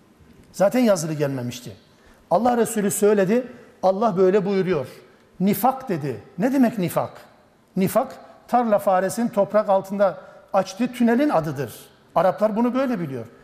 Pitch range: 155-210 Hz